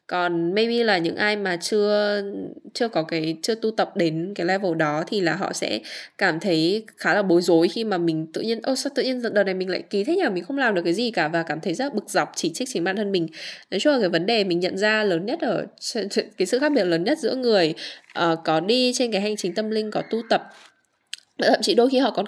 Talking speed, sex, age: 270 wpm, female, 10-29